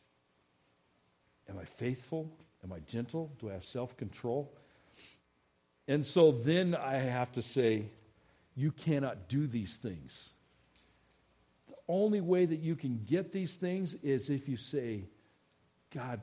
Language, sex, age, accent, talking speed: English, male, 60-79, American, 135 wpm